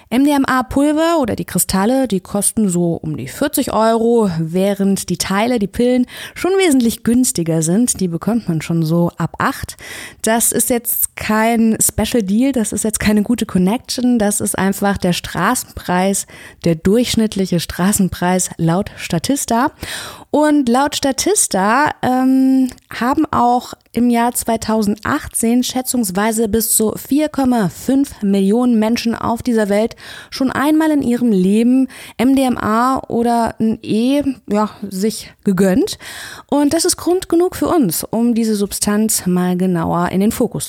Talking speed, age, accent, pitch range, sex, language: 140 wpm, 20-39, German, 200-255 Hz, female, German